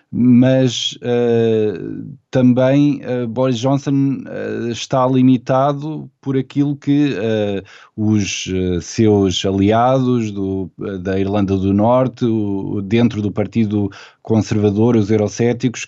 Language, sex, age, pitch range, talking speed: Portuguese, male, 20-39, 110-135 Hz, 85 wpm